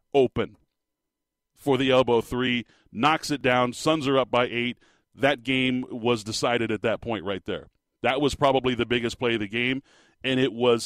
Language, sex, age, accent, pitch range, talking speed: English, male, 40-59, American, 120-140 Hz, 190 wpm